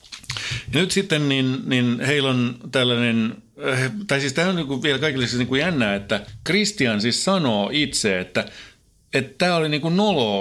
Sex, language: male, Finnish